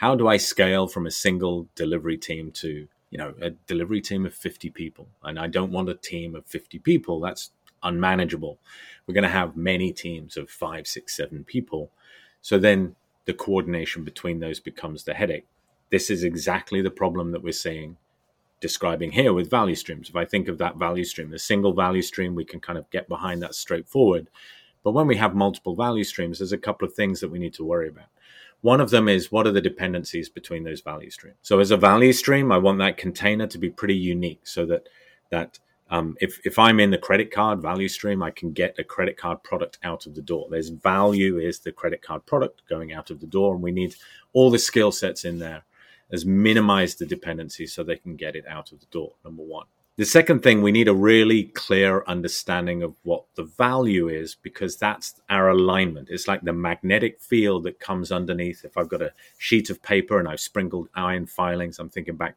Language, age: English, 30-49